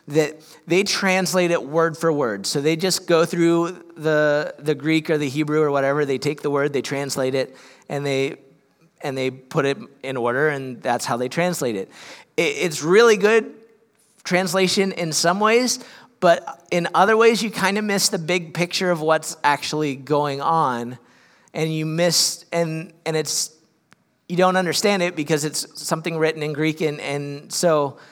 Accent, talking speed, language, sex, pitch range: American, 180 wpm, English, male, 145-180 Hz